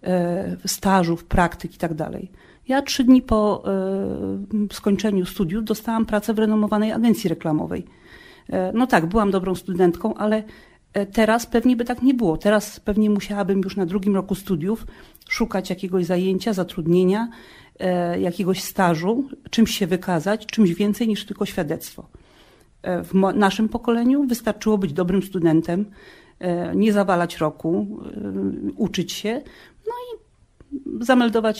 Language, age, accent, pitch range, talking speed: Polish, 40-59, native, 180-220 Hz, 125 wpm